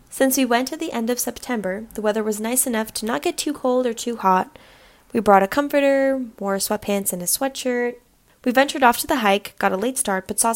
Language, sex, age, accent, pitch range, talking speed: English, female, 10-29, American, 200-255 Hz, 240 wpm